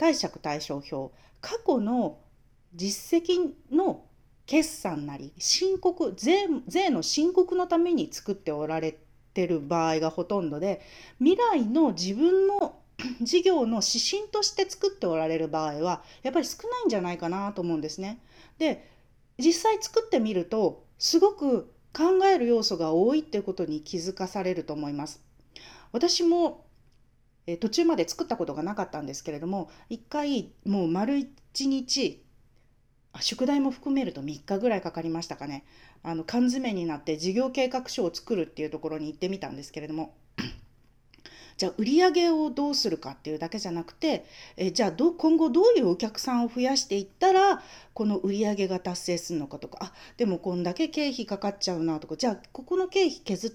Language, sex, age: Japanese, female, 40-59